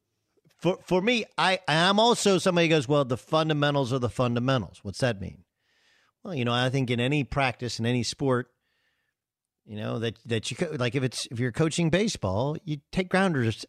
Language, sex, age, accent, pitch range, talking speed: English, male, 50-69, American, 125-170 Hz, 195 wpm